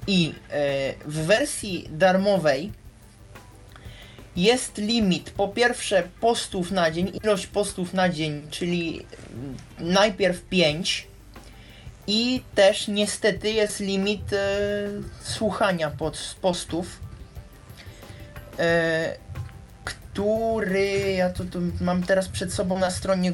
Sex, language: male, Polish